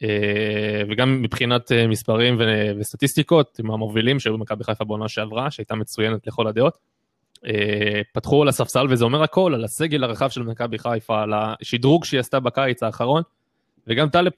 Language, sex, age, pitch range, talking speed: Hebrew, male, 20-39, 110-135 Hz, 150 wpm